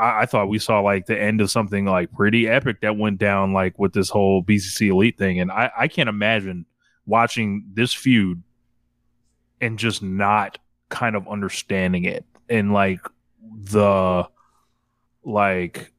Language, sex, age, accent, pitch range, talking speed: English, male, 20-39, American, 105-125 Hz, 155 wpm